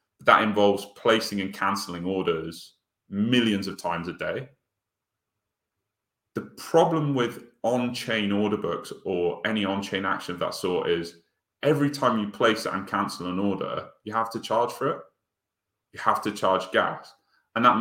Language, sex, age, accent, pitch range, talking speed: English, male, 30-49, British, 95-115 Hz, 160 wpm